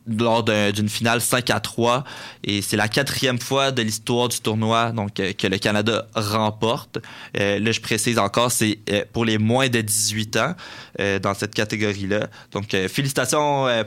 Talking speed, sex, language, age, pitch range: 170 wpm, male, French, 20-39, 105-125 Hz